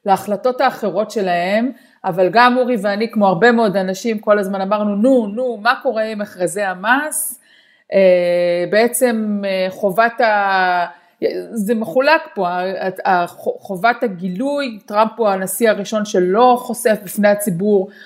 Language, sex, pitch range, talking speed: Hebrew, female, 190-245 Hz, 125 wpm